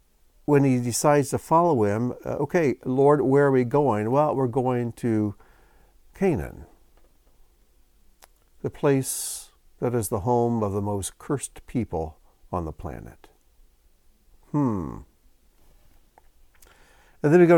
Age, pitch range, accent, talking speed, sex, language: 60-79, 90-125 Hz, American, 125 wpm, male, English